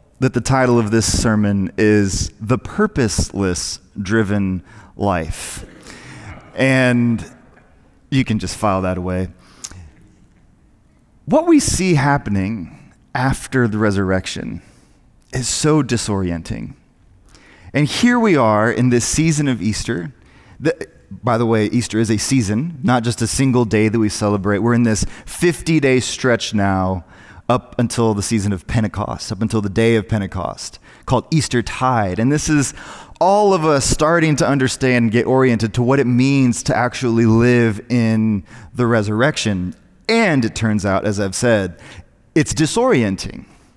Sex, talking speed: male, 140 wpm